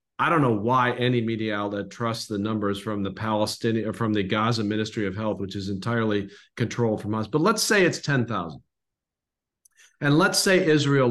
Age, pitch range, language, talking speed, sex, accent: 40-59, 105-145 Hz, English, 195 wpm, male, American